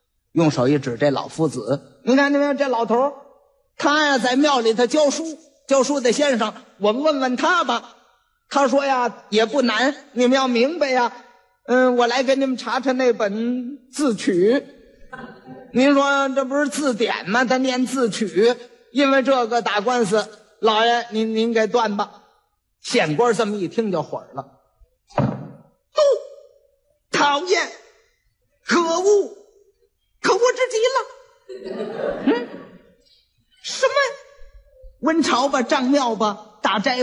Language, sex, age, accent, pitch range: Chinese, male, 50-69, native, 235-320 Hz